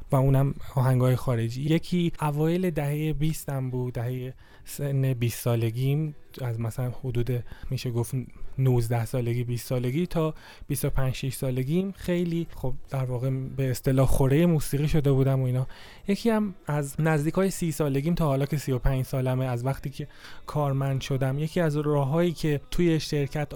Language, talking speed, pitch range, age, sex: Persian, 160 wpm, 130-160 Hz, 20-39, male